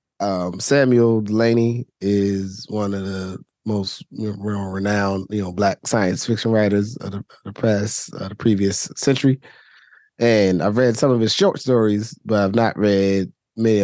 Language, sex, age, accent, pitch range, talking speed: English, male, 20-39, American, 100-120 Hz, 160 wpm